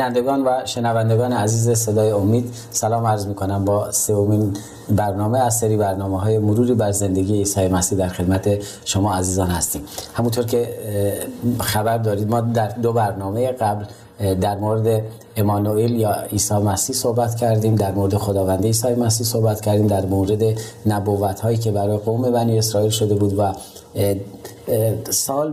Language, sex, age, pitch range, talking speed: Persian, male, 30-49, 100-120 Hz, 150 wpm